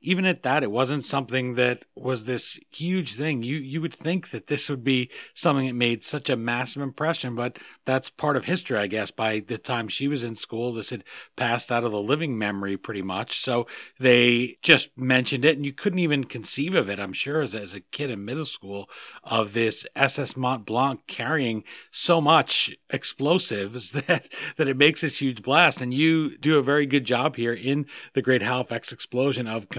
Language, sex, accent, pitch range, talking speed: English, male, American, 115-145 Hz, 205 wpm